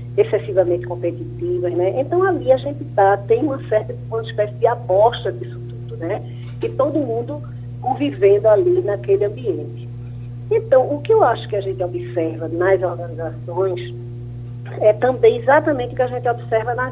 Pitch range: 120-195 Hz